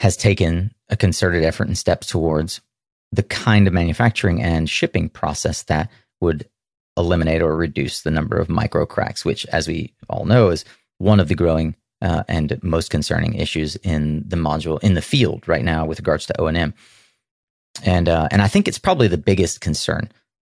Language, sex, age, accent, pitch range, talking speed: English, male, 30-49, American, 80-105 Hz, 180 wpm